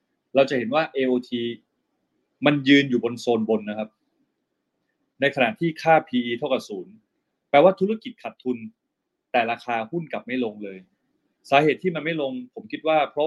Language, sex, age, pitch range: Thai, male, 20-39, 120-150 Hz